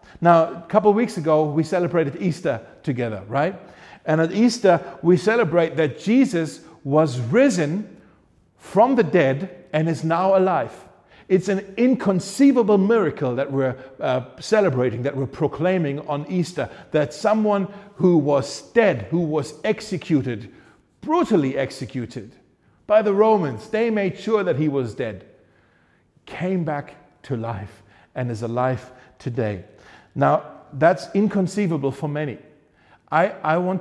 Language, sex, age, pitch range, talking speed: German, male, 50-69, 135-185 Hz, 135 wpm